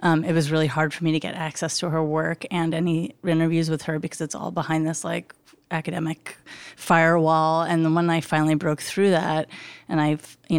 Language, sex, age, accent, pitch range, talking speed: English, female, 30-49, American, 155-170 Hz, 210 wpm